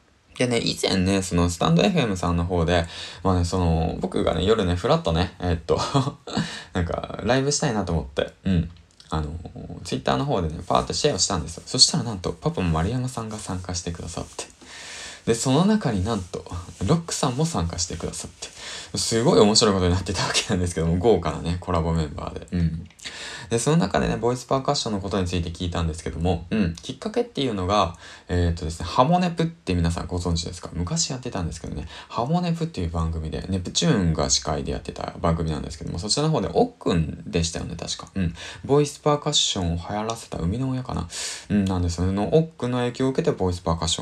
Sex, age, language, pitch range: male, 20-39, Japanese, 85-120 Hz